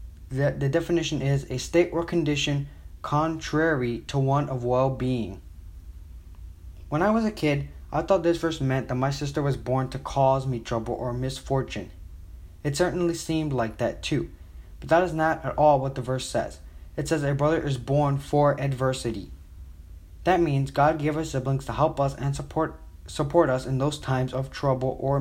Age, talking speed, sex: 20-39, 180 wpm, male